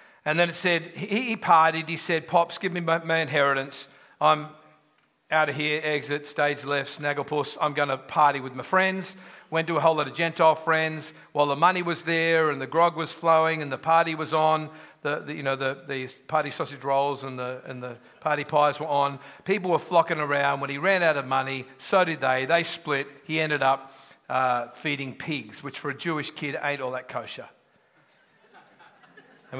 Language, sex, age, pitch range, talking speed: English, male, 40-59, 140-165 Hz, 205 wpm